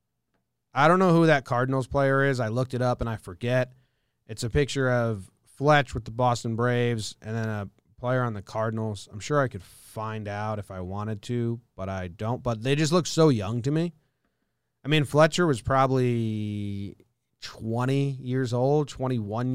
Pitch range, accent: 110-135 Hz, American